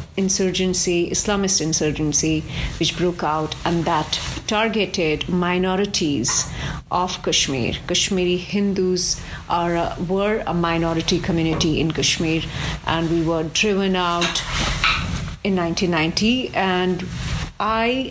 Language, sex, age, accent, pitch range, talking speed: English, female, 40-59, Indian, 160-185 Hz, 95 wpm